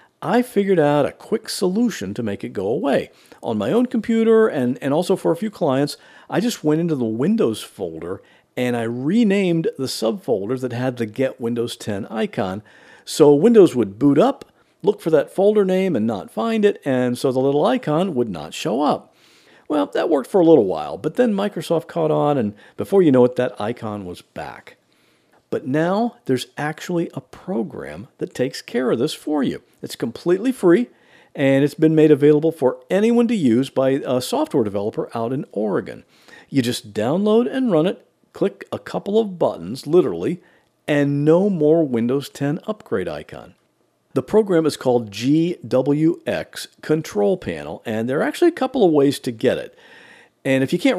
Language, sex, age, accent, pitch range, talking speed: English, male, 50-69, American, 130-205 Hz, 185 wpm